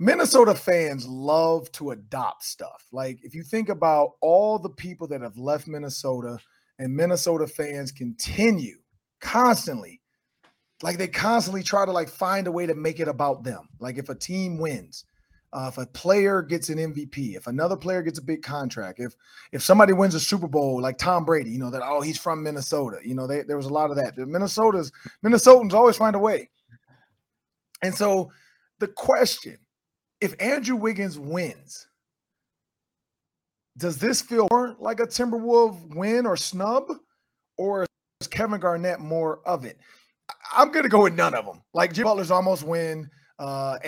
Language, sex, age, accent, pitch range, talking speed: English, male, 30-49, American, 145-200 Hz, 175 wpm